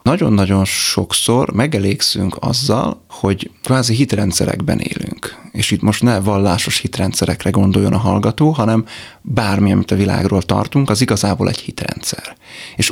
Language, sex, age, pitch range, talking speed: Hungarian, male, 30-49, 100-115 Hz, 130 wpm